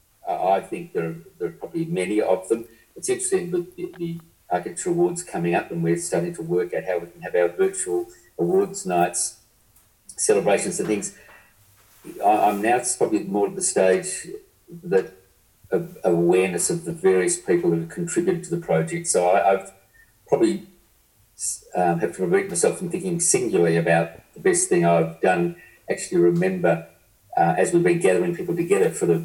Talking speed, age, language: 180 wpm, 50-69, English